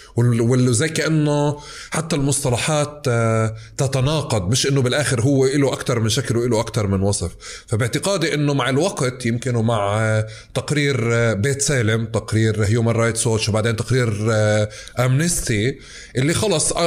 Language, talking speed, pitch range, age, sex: Arabic, 125 wpm, 115-145 Hz, 20-39, male